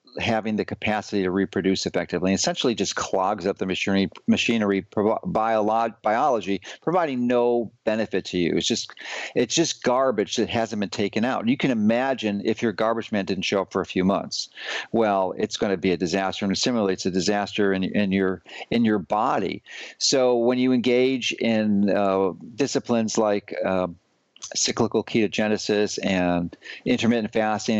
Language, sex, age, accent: English, male, 50-69, American